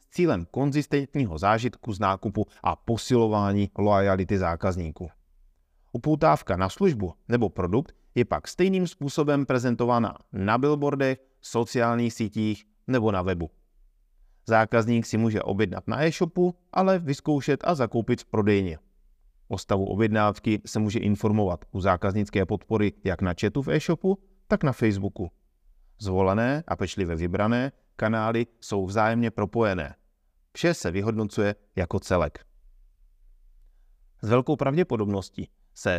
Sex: male